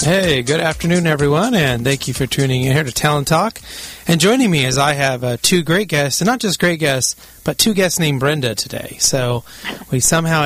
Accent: American